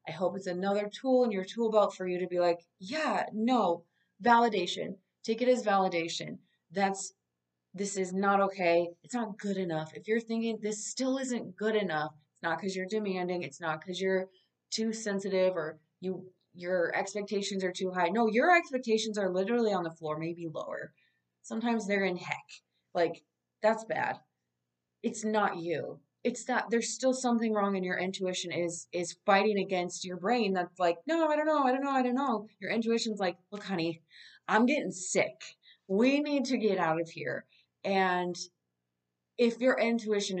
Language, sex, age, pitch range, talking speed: English, female, 30-49, 170-215 Hz, 180 wpm